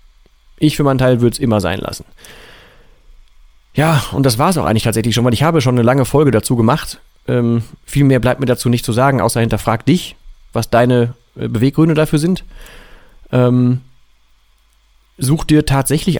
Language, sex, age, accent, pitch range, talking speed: German, male, 30-49, German, 110-135 Hz, 180 wpm